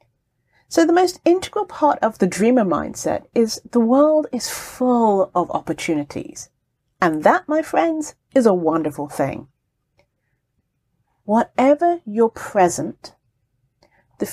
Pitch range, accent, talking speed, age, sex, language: 165-265 Hz, British, 115 wpm, 40-59, female, English